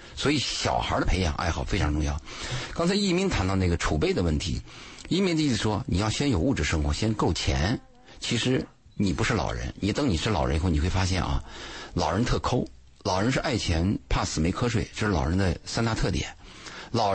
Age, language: 50-69, Chinese